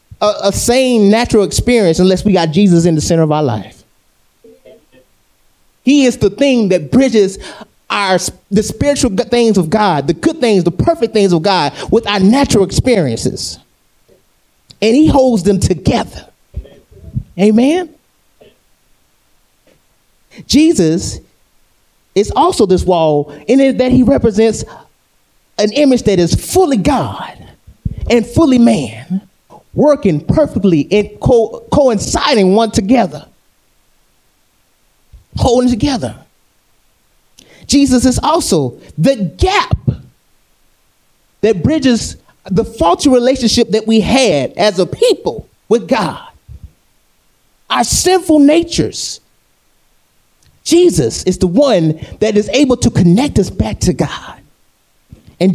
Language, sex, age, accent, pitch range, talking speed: English, male, 30-49, American, 185-255 Hz, 115 wpm